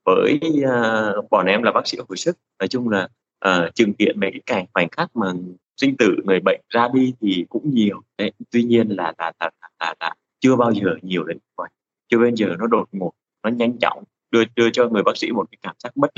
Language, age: Vietnamese, 20-39